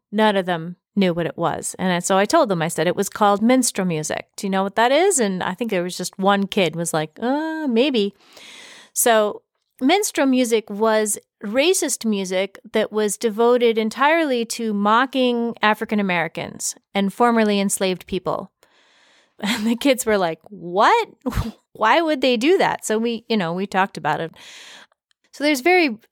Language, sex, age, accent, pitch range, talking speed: English, female, 30-49, American, 195-240 Hz, 175 wpm